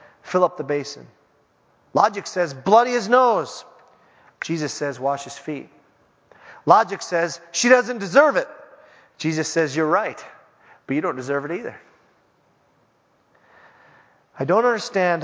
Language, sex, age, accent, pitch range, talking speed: English, male, 30-49, American, 145-195 Hz, 130 wpm